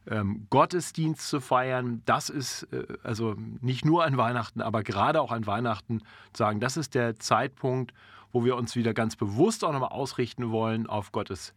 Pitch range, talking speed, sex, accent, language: 105-130 Hz, 170 wpm, male, German, German